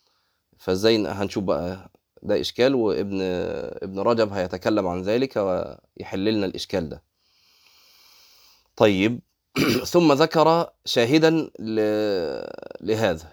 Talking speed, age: 85 wpm, 30-49